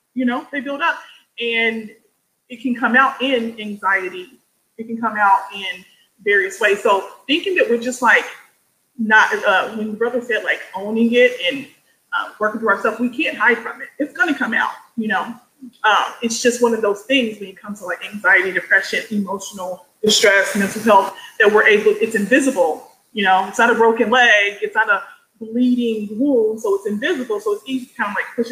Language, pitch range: English, 215-265 Hz